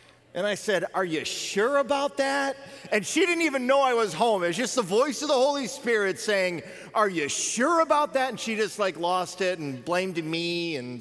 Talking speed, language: 225 wpm, English